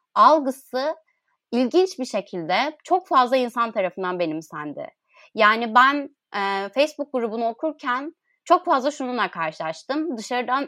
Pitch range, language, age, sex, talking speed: 205-280 Hz, Turkish, 30-49, female, 110 wpm